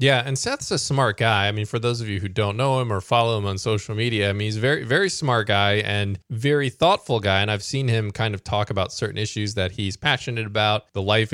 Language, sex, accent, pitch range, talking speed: English, male, American, 110-145 Hz, 265 wpm